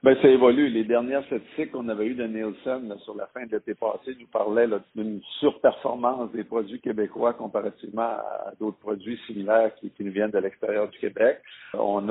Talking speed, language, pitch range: 205 wpm, French, 105-120 Hz